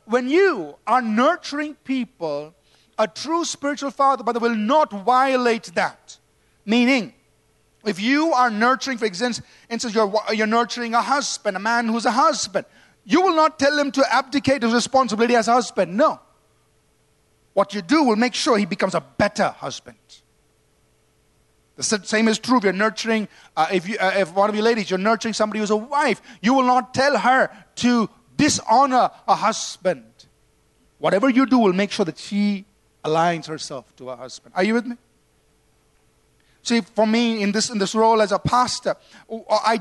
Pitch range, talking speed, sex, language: 205-255 Hz, 175 wpm, male, English